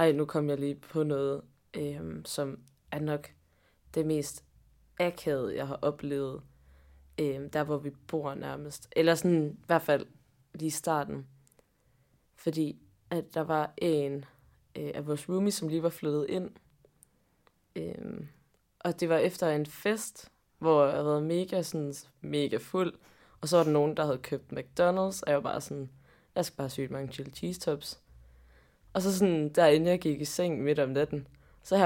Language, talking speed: Danish, 175 wpm